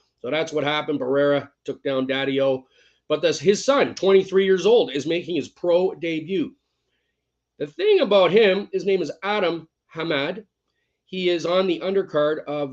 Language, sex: English, male